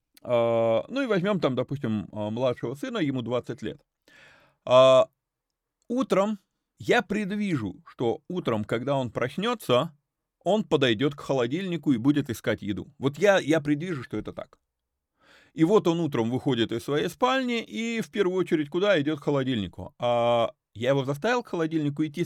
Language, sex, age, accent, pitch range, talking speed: Russian, male, 30-49, native, 120-175 Hz, 150 wpm